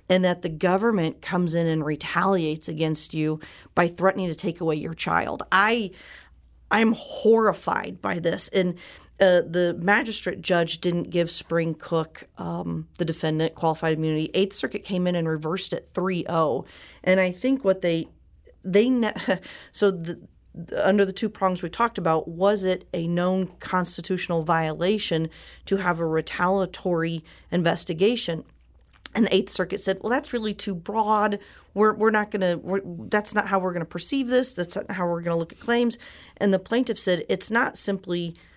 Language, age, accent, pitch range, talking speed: English, 40-59, American, 165-195 Hz, 175 wpm